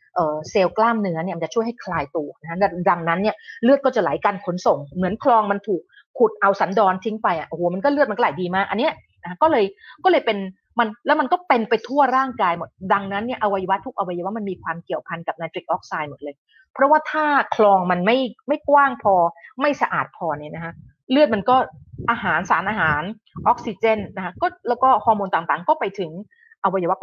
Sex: female